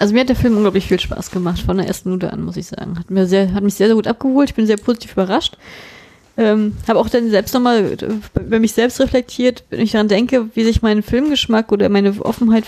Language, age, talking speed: German, 20-39, 245 wpm